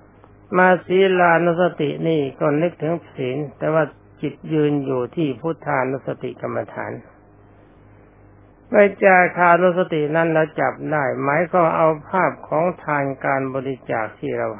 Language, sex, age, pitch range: Thai, male, 60-79, 105-165 Hz